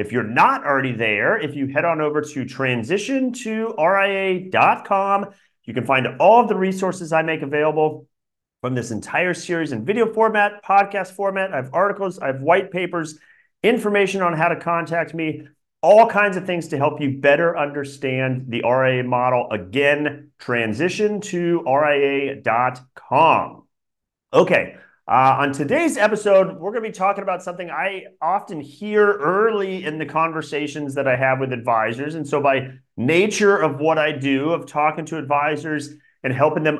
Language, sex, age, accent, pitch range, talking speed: English, male, 40-59, American, 135-185 Hz, 165 wpm